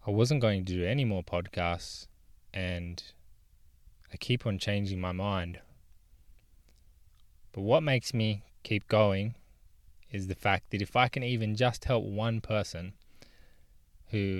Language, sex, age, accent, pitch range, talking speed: English, male, 20-39, Australian, 90-115 Hz, 140 wpm